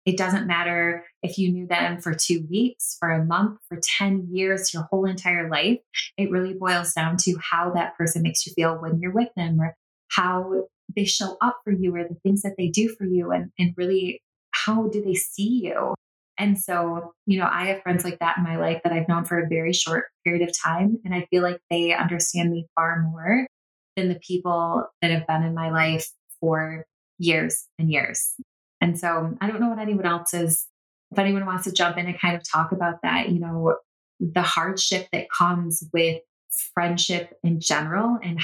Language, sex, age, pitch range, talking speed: English, female, 20-39, 170-195 Hz, 210 wpm